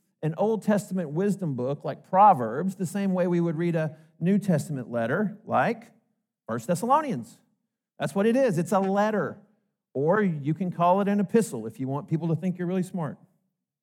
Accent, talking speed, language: American, 185 wpm, English